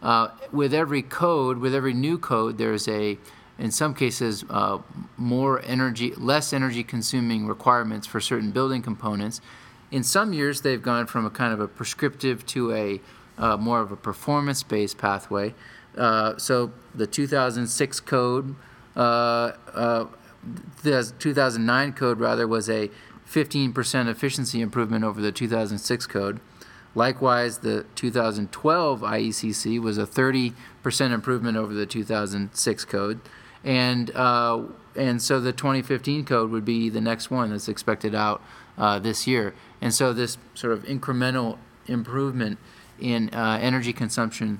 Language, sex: English, male